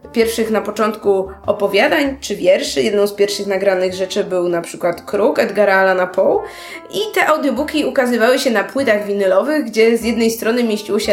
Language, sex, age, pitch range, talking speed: Polish, female, 20-39, 205-275 Hz, 175 wpm